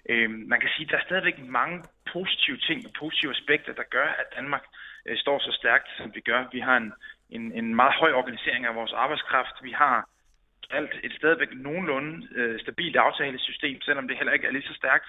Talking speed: 200 wpm